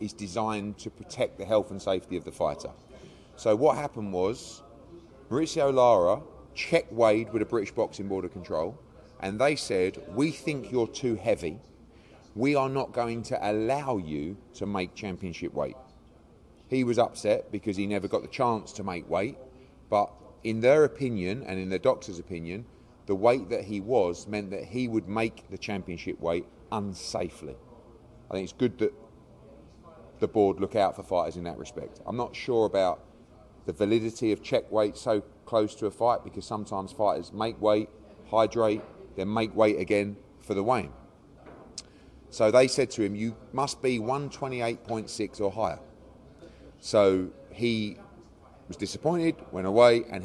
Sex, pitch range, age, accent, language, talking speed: male, 95-115 Hz, 30-49, British, English, 165 wpm